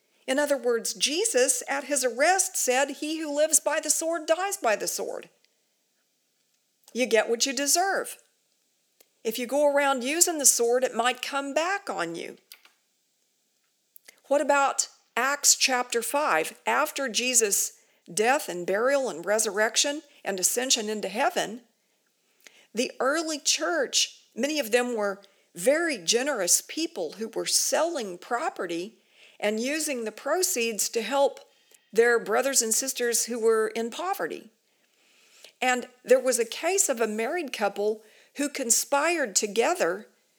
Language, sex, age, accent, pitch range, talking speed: English, female, 50-69, American, 225-295 Hz, 135 wpm